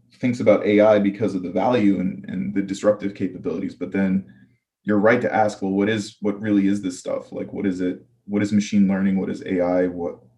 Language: English